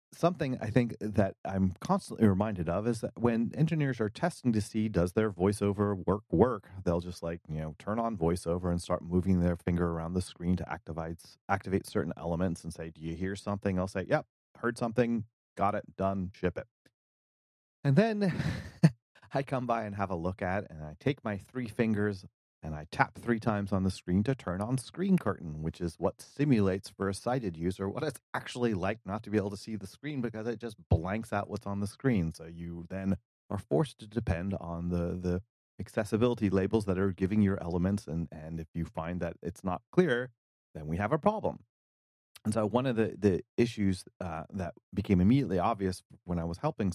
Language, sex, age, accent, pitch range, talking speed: English, male, 30-49, American, 85-115 Hz, 210 wpm